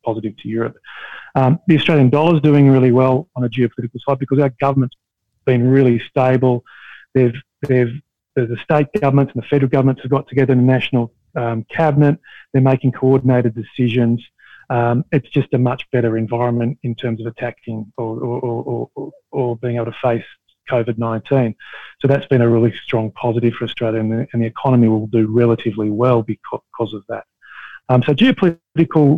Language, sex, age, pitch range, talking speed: English, male, 30-49, 120-140 Hz, 175 wpm